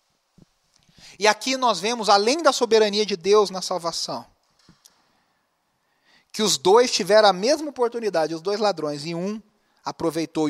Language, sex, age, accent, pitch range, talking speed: Portuguese, male, 40-59, Brazilian, 165-230 Hz, 135 wpm